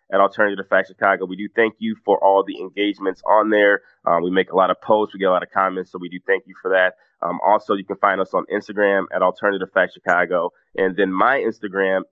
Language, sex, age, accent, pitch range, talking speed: English, male, 20-39, American, 95-105 Hz, 250 wpm